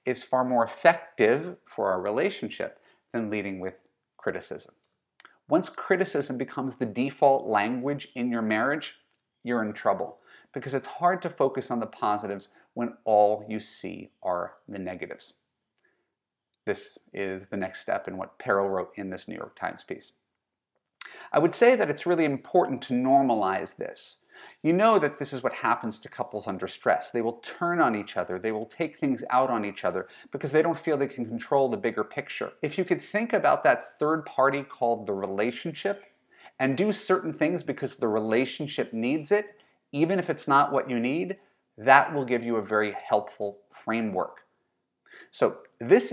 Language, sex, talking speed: English, male, 175 wpm